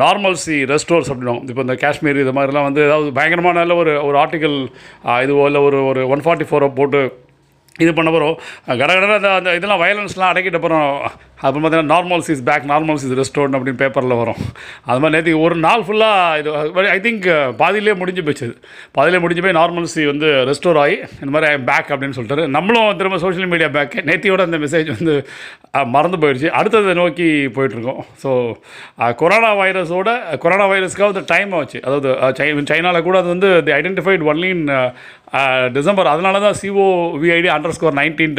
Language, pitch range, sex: Tamil, 140-180 Hz, male